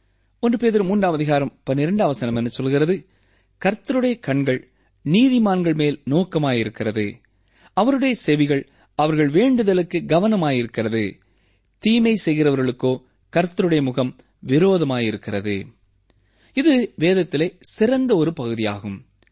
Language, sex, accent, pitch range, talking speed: Tamil, male, native, 110-175 Hz, 80 wpm